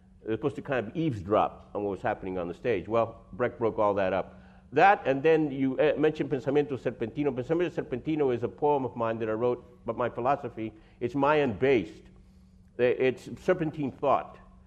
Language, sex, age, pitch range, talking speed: English, male, 50-69, 115-150 Hz, 180 wpm